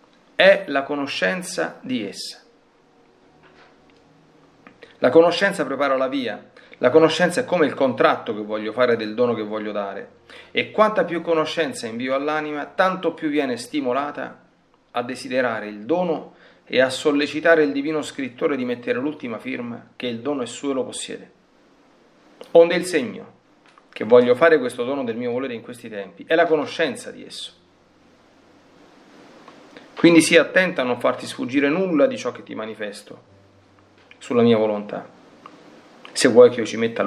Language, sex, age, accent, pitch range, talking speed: Italian, male, 40-59, native, 115-185 Hz, 155 wpm